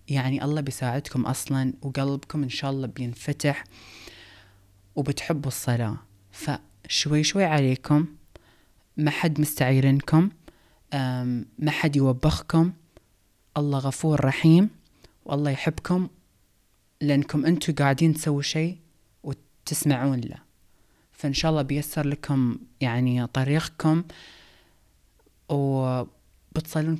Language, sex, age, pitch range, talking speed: Arabic, female, 20-39, 125-150 Hz, 90 wpm